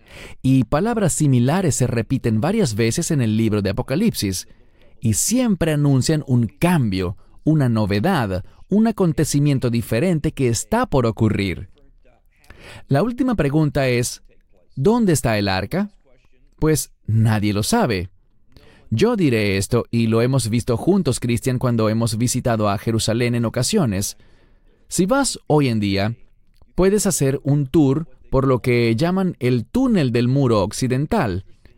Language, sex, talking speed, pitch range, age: English, male, 135 wpm, 110-155 Hz, 30-49